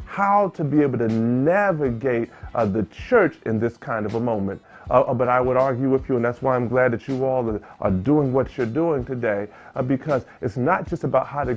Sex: male